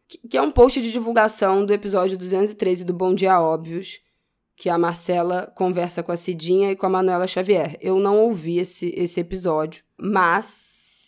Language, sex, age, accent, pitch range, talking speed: Portuguese, female, 20-39, Brazilian, 170-200 Hz, 175 wpm